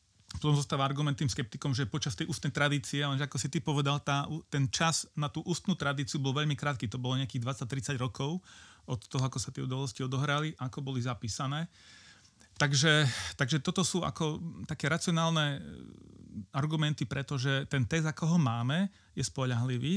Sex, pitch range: male, 130-150 Hz